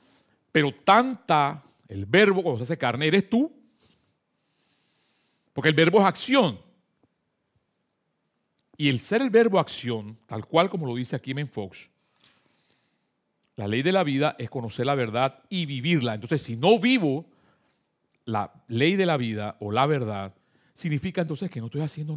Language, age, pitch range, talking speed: Spanish, 40-59, 120-180 Hz, 155 wpm